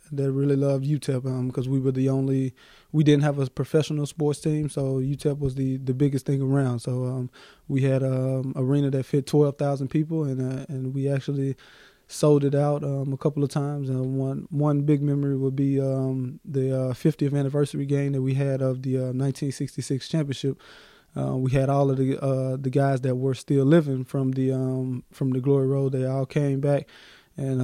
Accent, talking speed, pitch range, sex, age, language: American, 205 wpm, 130-145 Hz, male, 20-39, Swedish